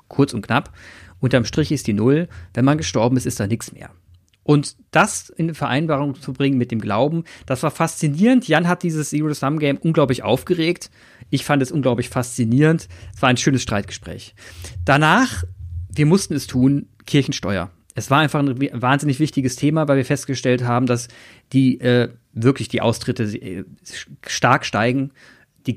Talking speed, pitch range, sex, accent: 170 wpm, 115-150 Hz, male, German